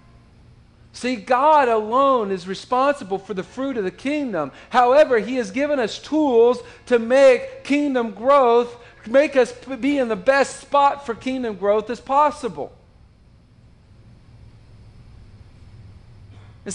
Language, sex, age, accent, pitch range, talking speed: English, male, 50-69, American, 205-260 Hz, 125 wpm